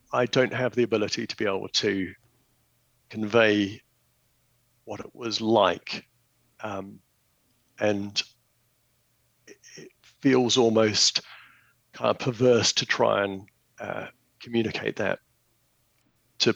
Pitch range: 105-125 Hz